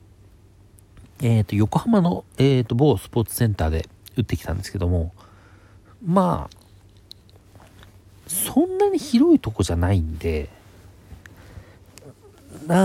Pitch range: 95-120 Hz